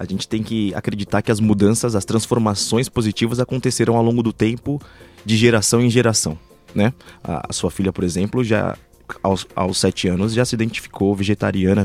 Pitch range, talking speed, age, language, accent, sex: 100-130 Hz, 175 wpm, 20-39, Portuguese, Brazilian, male